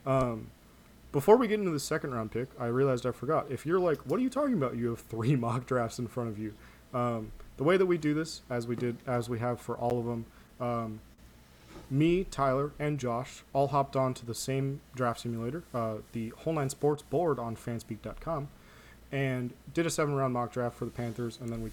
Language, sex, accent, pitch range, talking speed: English, male, American, 115-140 Hz, 225 wpm